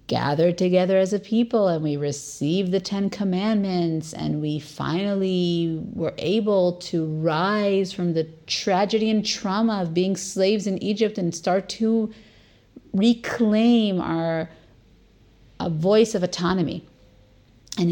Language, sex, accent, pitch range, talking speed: English, female, American, 150-200 Hz, 125 wpm